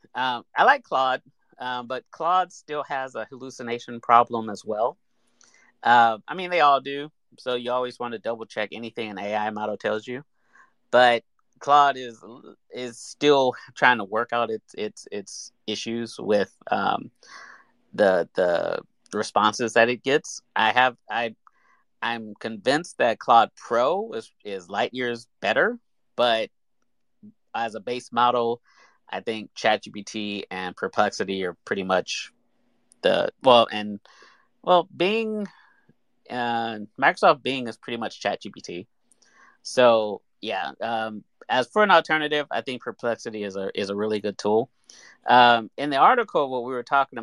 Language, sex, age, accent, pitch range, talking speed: English, male, 30-49, American, 110-130 Hz, 150 wpm